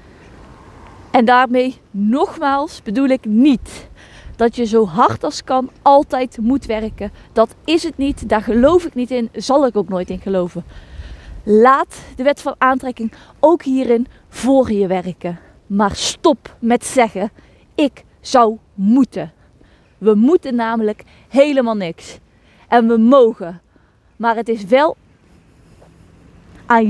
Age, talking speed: 20-39, 135 wpm